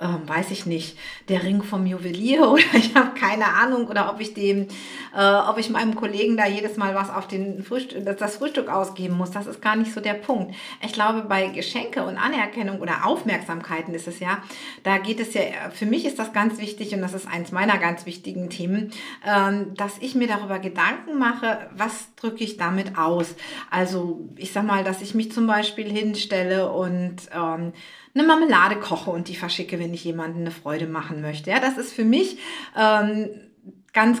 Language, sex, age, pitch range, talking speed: German, female, 50-69, 185-230 Hz, 195 wpm